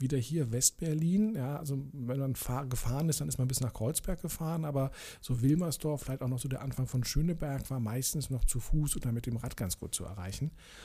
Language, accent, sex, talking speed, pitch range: German, German, male, 220 wpm, 120-150 Hz